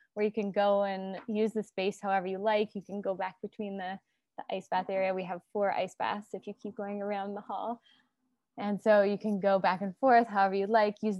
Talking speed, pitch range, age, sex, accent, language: 240 wpm, 195-220 Hz, 20-39, female, American, English